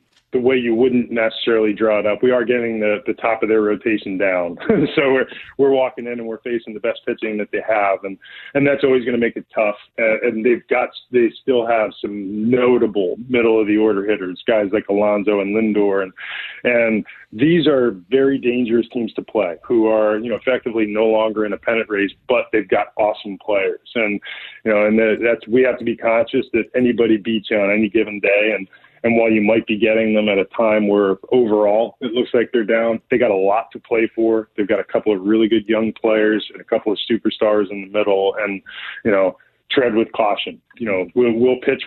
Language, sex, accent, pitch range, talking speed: English, male, American, 105-120 Hz, 220 wpm